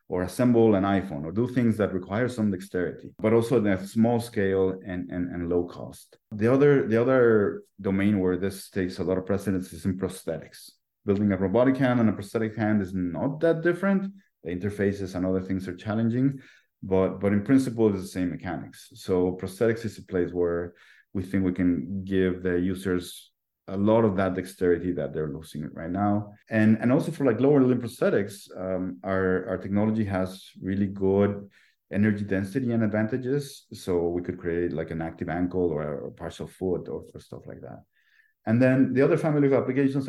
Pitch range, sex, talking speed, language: 90-115 Hz, male, 195 wpm, English